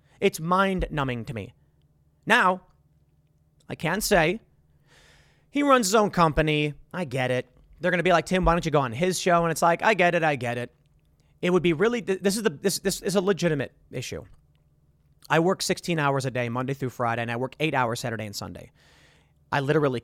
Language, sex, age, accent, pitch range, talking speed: English, male, 30-49, American, 130-175 Hz, 210 wpm